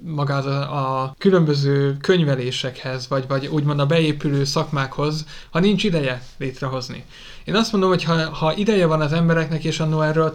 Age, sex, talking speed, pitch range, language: 30-49, male, 160 wpm, 140-170 Hz, Hungarian